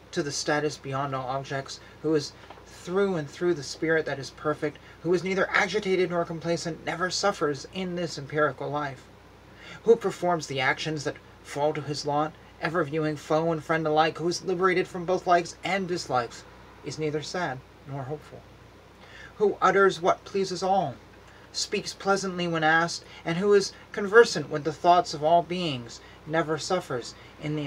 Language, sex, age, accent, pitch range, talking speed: English, male, 30-49, American, 125-170 Hz, 170 wpm